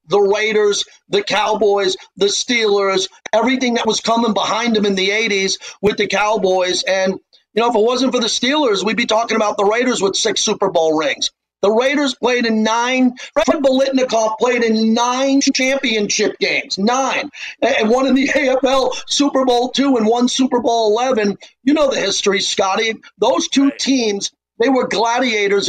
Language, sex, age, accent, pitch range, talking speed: English, male, 40-59, American, 200-245 Hz, 175 wpm